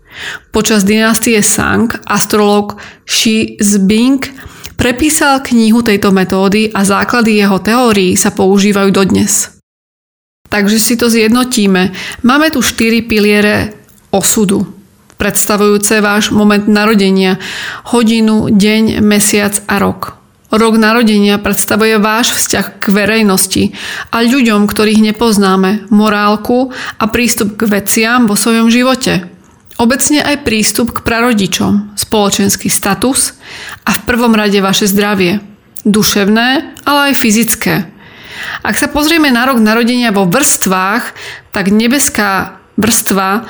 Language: Slovak